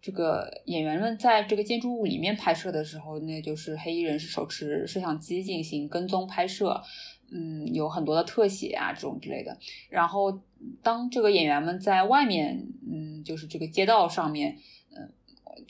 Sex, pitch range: female, 160-215 Hz